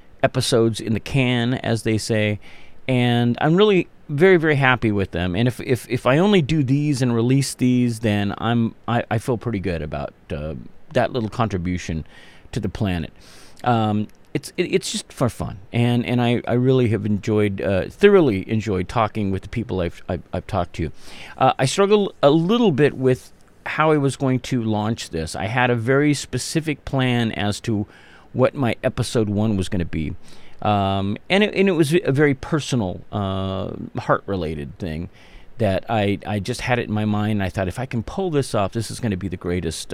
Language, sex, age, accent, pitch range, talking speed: English, male, 40-59, American, 100-135 Hz, 200 wpm